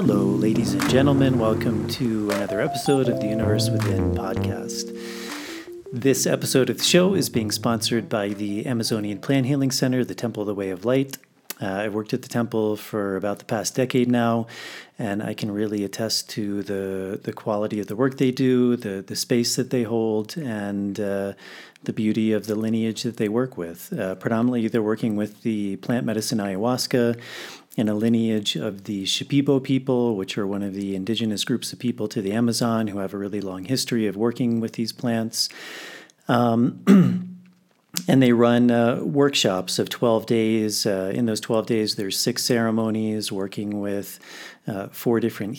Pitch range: 105-120 Hz